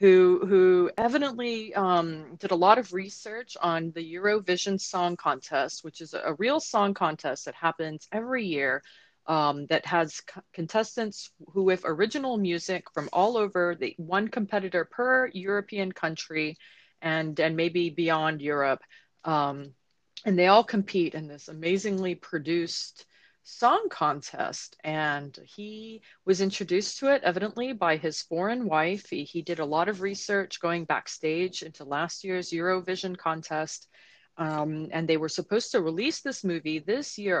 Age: 30-49